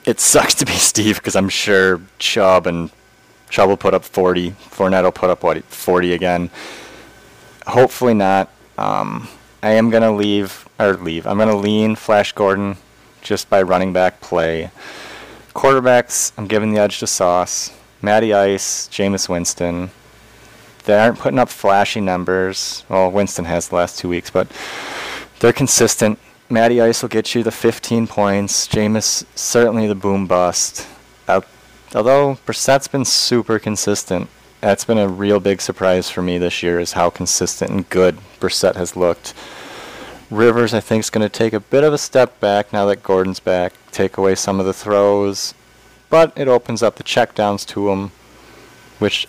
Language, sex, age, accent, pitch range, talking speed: English, male, 30-49, American, 95-115 Hz, 170 wpm